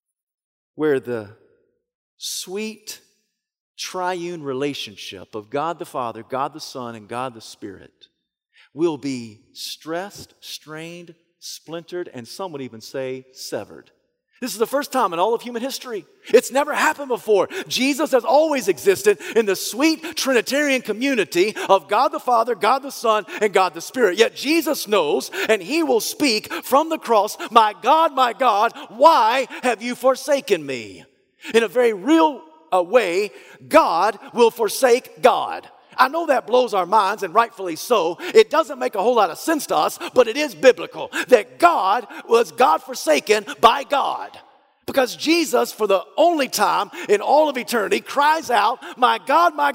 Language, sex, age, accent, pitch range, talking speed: English, male, 40-59, American, 190-320 Hz, 160 wpm